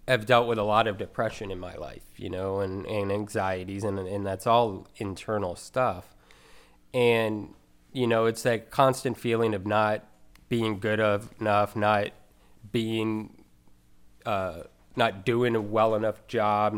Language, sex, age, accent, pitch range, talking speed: English, male, 30-49, American, 100-120 Hz, 150 wpm